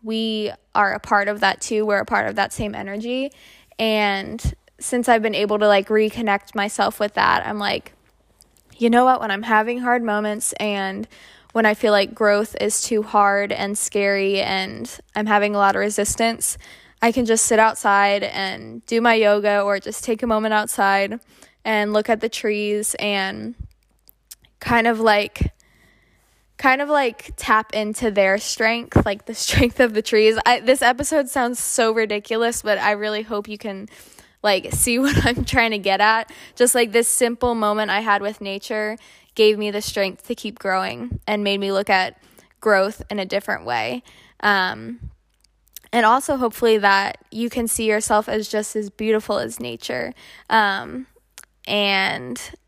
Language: English